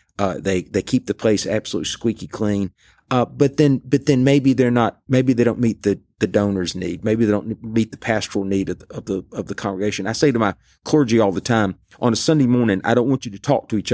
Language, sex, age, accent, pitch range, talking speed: English, male, 40-59, American, 105-130 Hz, 255 wpm